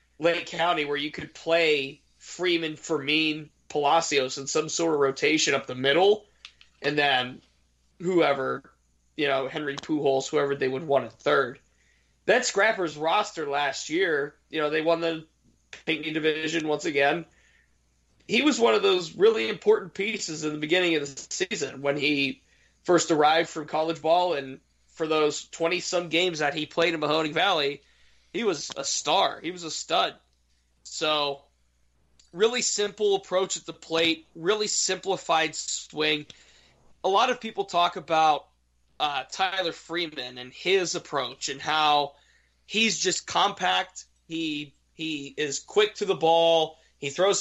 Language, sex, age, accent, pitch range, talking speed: English, male, 20-39, American, 140-175 Hz, 155 wpm